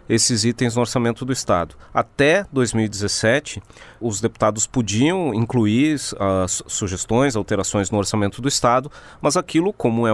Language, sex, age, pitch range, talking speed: Portuguese, male, 30-49, 110-145 Hz, 135 wpm